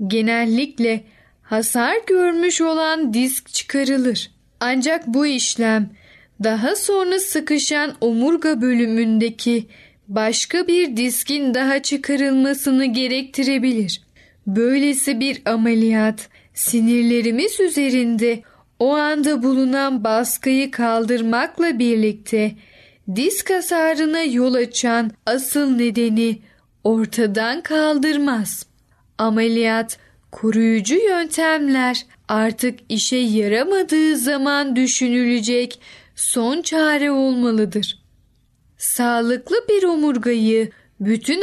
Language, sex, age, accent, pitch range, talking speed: Turkish, female, 10-29, native, 225-290 Hz, 80 wpm